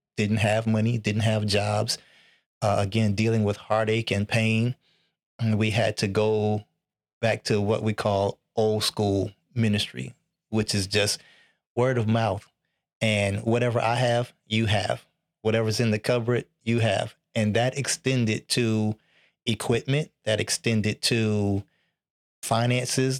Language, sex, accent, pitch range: English, male, American, 105-115 Hz